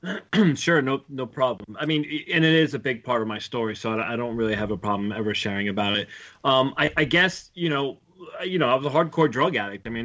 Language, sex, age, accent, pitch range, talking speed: English, male, 30-49, American, 110-130 Hz, 250 wpm